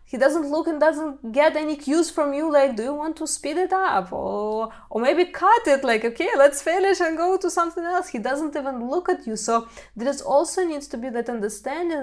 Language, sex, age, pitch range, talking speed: English, female, 20-39, 215-275 Hz, 235 wpm